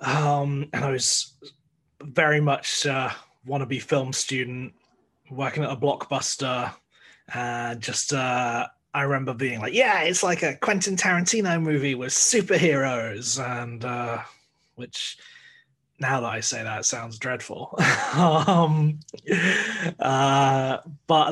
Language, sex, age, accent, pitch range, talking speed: English, male, 20-39, British, 125-155 Hz, 125 wpm